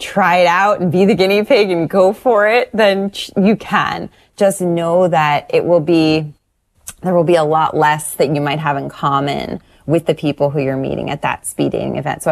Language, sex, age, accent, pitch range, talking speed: English, female, 20-39, American, 150-190 Hz, 220 wpm